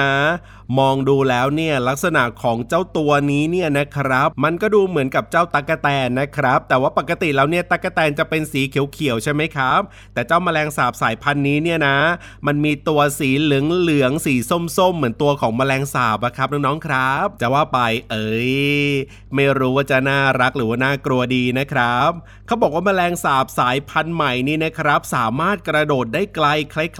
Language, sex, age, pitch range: Thai, male, 30-49, 130-160 Hz